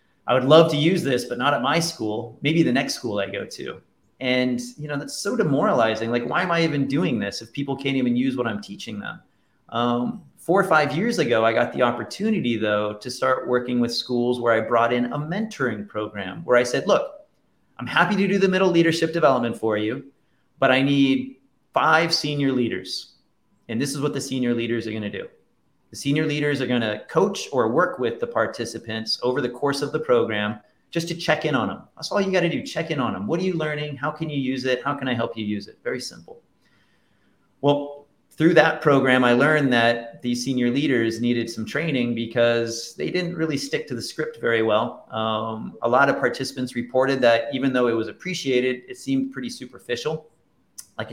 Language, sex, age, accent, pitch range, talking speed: English, male, 30-49, American, 115-155 Hz, 220 wpm